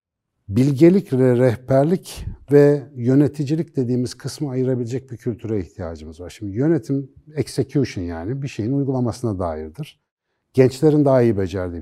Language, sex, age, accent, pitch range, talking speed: Turkish, male, 60-79, native, 110-145 Hz, 120 wpm